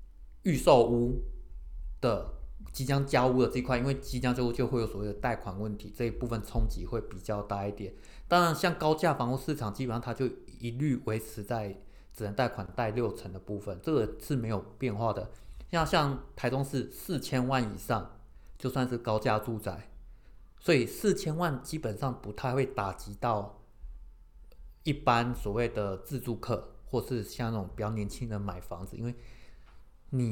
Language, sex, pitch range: Chinese, male, 105-125 Hz